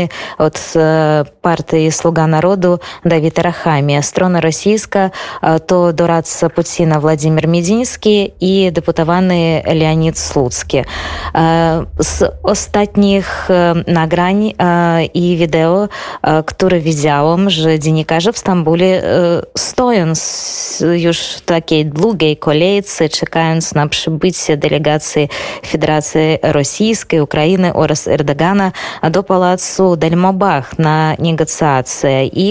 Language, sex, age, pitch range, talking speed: Polish, female, 20-39, 155-185 Hz, 90 wpm